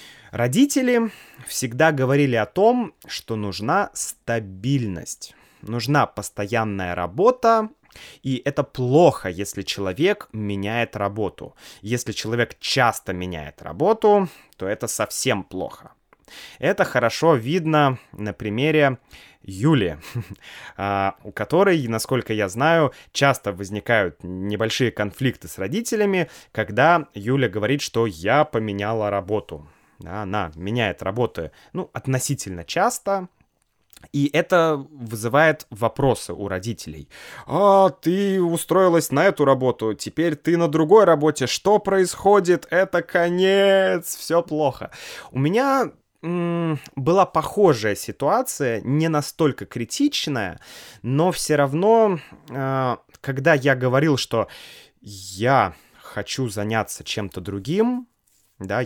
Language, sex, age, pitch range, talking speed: Russian, male, 20-39, 105-170 Hz, 105 wpm